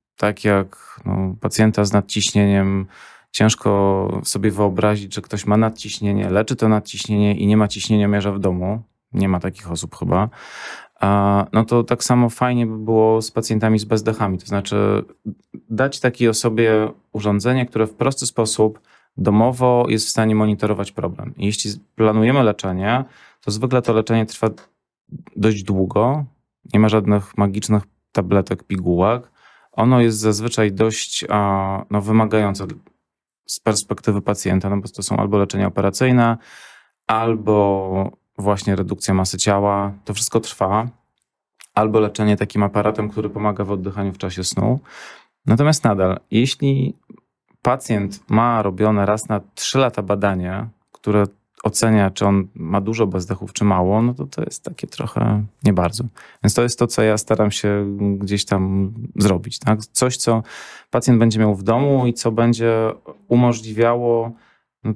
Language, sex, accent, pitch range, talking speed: Polish, male, native, 100-115 Hz, 145 wpm